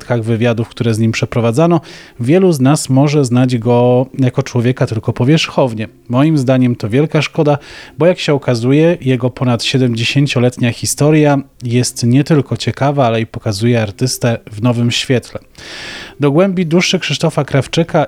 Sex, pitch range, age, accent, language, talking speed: male, 120-140 Hz, 30-49, native, Polish, 145 wpm